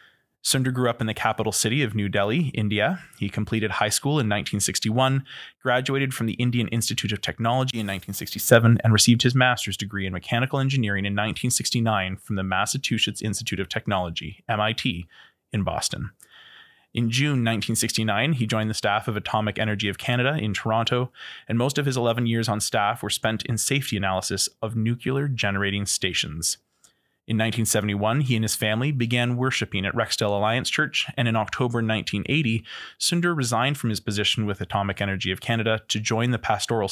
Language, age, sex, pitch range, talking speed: English, 20-39, male, 105-120 Hz, 170 wpm